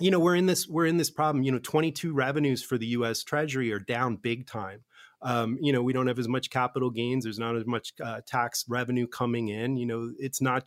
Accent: American